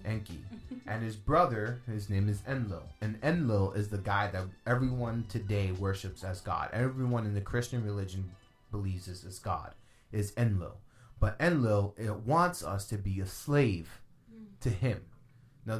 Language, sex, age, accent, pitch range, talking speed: English, male, 30-49, American, 100-125 Hz, 160 wpm